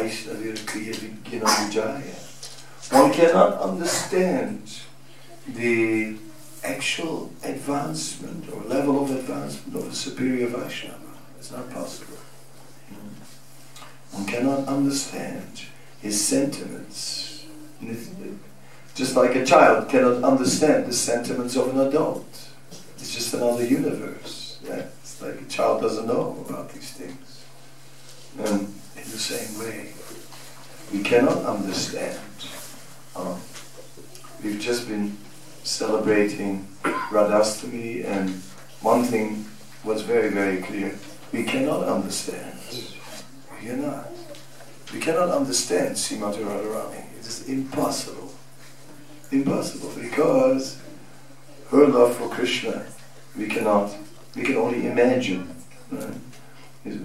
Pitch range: 105-140 Hz